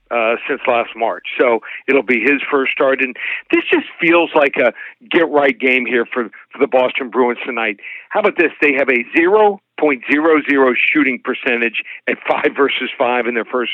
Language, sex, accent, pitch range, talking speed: English, male, American, 130-150 Hz, 190 wpm